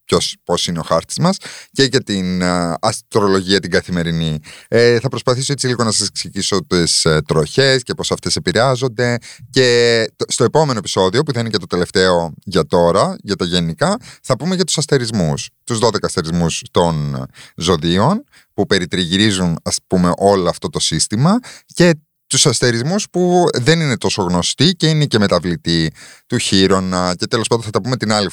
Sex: male